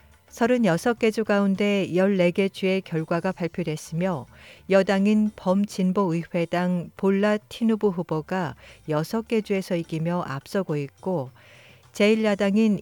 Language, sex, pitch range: Korean, female, 165-210 Hz